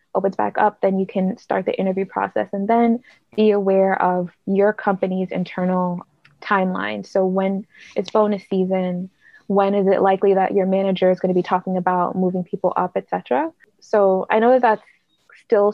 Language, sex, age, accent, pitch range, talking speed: English, female, 20-39, American, 190-220 Hz, 175 wpm